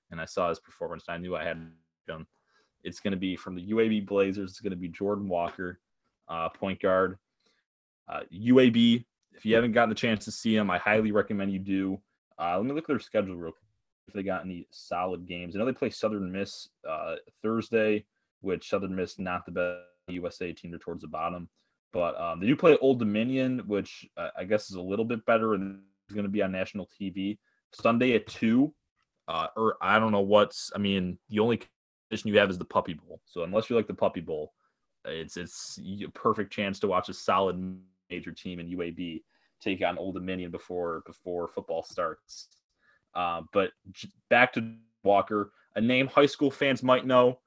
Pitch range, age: 90-110 Hz, 20-39